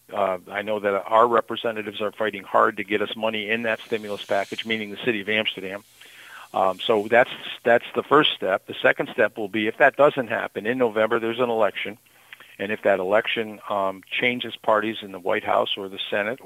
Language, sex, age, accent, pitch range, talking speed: English, male, 50-69, American, 105-120 Hz, 210 wpm